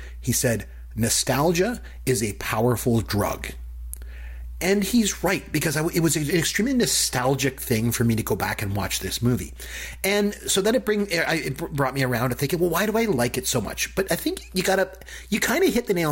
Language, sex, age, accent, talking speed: English, male, 30-49, American, 210 wpm